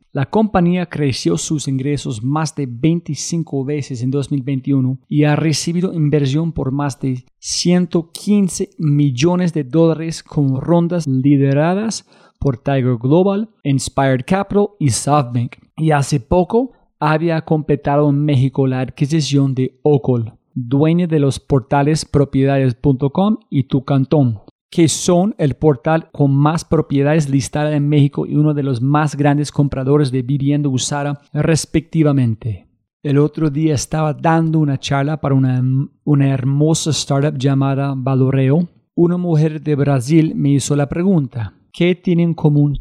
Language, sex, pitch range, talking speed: Spanish, male, 140-160 Hz, 135 wpm